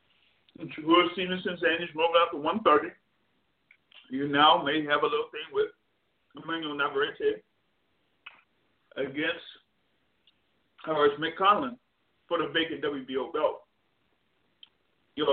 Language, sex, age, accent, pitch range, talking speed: English, male, 50-69, American, 145-205 Hz, 110 wpm